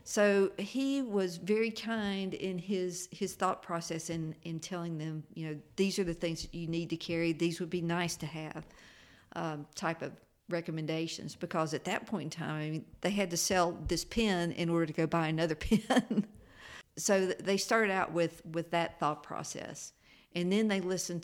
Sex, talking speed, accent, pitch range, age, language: female, 190 wpm, American, 160-185 Hz, 50-69, English